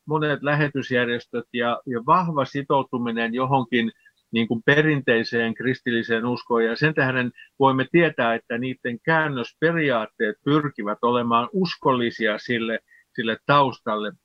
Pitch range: 120-145 Hz